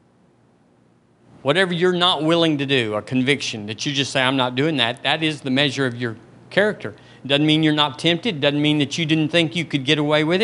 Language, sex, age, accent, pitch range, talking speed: English, male, 50-69, American, 120-150 Hz, 225 wpm